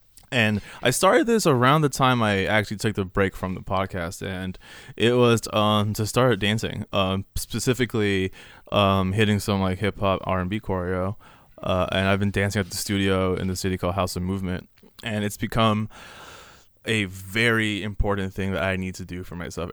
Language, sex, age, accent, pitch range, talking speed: English, male, 20-39, American, 95-110 Hz, 185 wpm